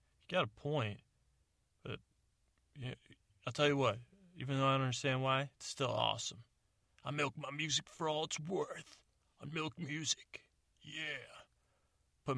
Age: 30-49